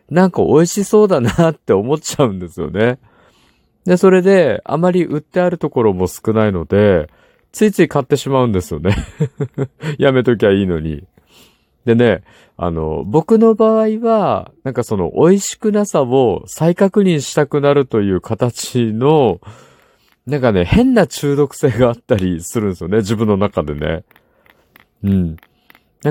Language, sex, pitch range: Japanese, male, 105-170 Hz